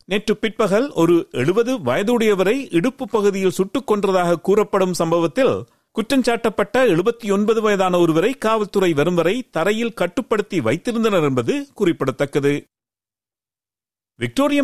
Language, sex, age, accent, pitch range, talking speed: Tamil, male, 50-69, native, 160-225 Hz, 105 wpm